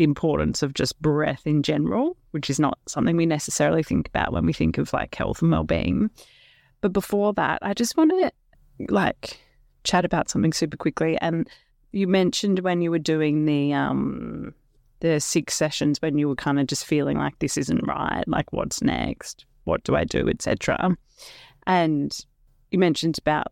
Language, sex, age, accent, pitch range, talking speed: English, female, 30-49, Australian, 145-190 Hz, 180 wpm